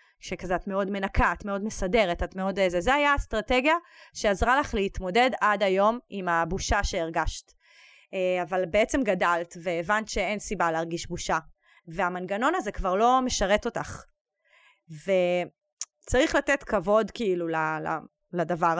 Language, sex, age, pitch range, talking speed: Hebrew, female, 20-39, 185-260 Hz, 130 wpm